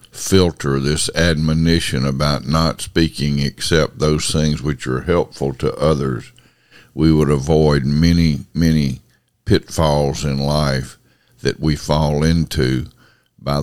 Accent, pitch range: American, 70-80 Hz